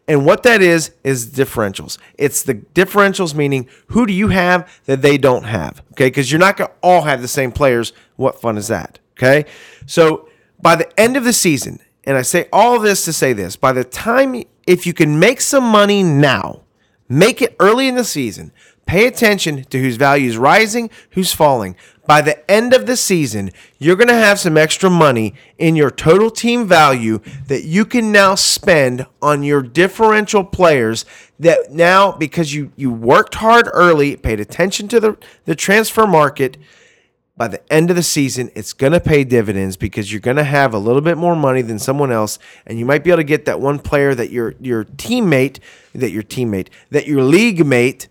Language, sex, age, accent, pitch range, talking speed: English, male, 40-59, American, 125-190 Hz, 200 wpm